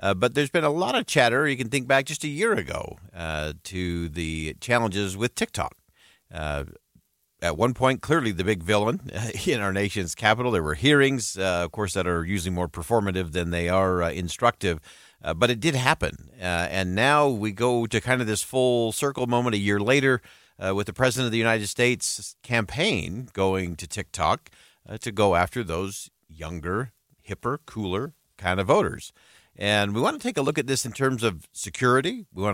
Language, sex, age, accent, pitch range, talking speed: English, male, 50-69, American, 95-125 Hz, 200 wpm